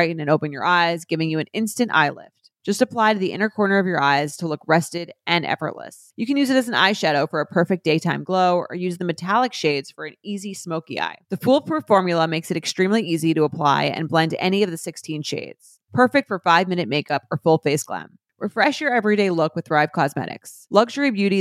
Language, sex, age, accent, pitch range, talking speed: English, female, 30-49, American, 160-205 Hz, 225 wpm